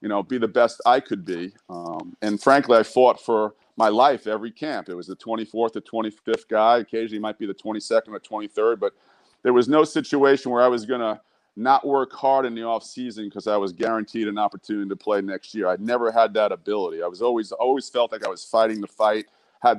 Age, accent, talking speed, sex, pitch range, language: 40-59, American, 230 wpm, male, 110-125 Hz, English